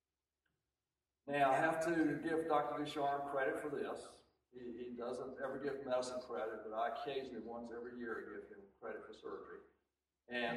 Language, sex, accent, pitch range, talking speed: English, male, American, 120-160 Hz, 165 wpm